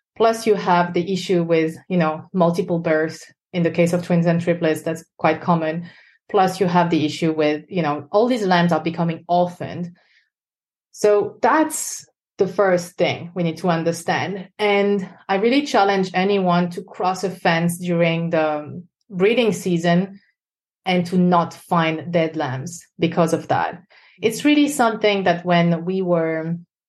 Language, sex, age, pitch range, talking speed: English, female, 30-49, 160-190 Hz, 160 wpm